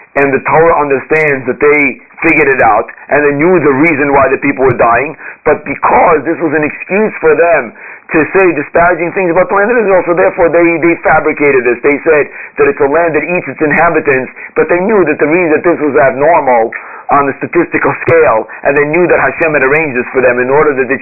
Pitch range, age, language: 135-170 Hz, 40-59, English